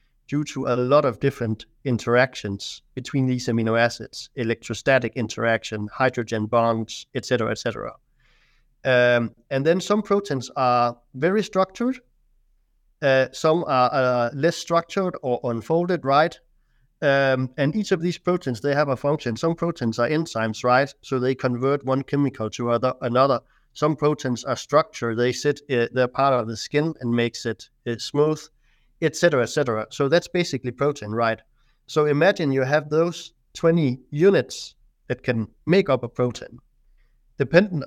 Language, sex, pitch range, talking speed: English, male, 120-150 Hz, 155 wpm